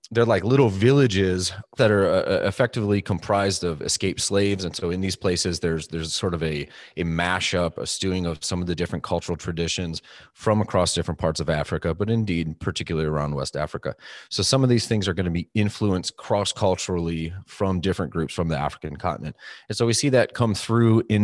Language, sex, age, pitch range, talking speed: English, male, 30-49, 85-110 Hz, 200 wpm